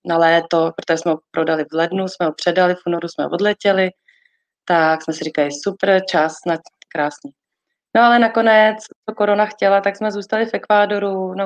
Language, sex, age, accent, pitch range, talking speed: Czech, female, 20-39, native, 180-205 Hz, 185 wpm